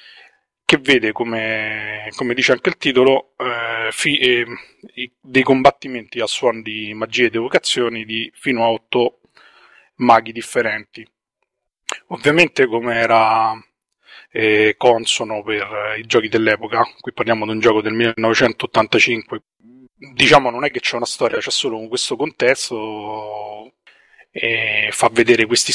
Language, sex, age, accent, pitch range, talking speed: Italian, male, 30-49, native, 110-125 Hz, 140 wpm